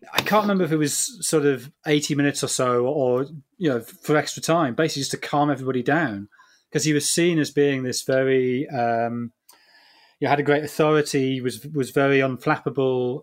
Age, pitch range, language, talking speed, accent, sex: 30-49, 125-155 Hz, English, 190 wpm, British, male